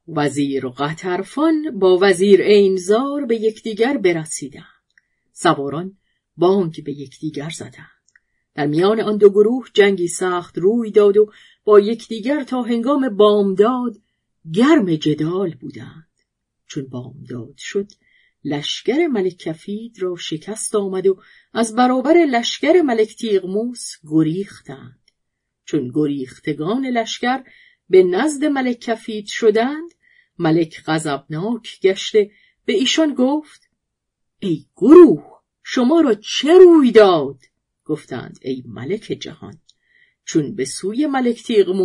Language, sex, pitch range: Persian, female, 160-235 Hz